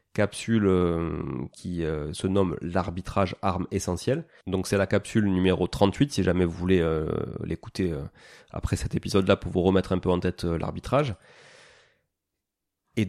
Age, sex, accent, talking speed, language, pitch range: 30-49, male, French, 140 wpm, French, 95-115 Hz